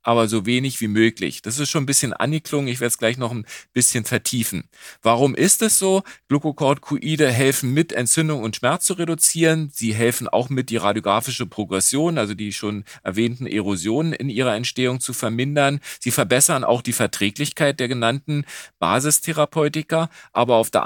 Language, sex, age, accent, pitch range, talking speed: German, male, 40-59, German, 110-140 Hz, 170 wpm